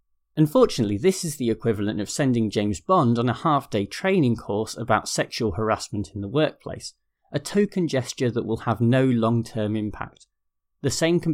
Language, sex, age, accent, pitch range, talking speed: English, male, 30-49, British, 105-150 Hz, 170 wpm